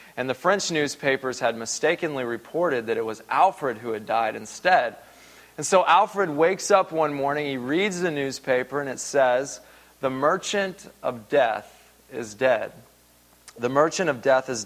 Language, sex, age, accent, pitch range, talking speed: English, male, 30-49, American, 125-165 Hz, 165 wpm